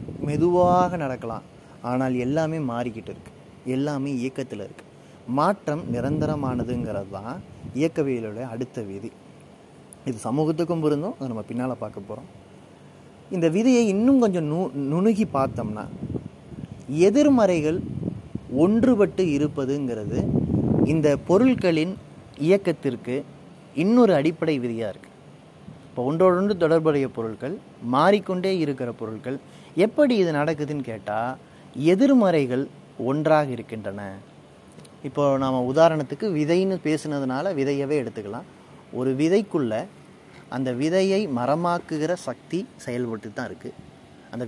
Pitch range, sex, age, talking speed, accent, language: 125-170 Hz, male, 30-49, 95 wpm, native, Tamil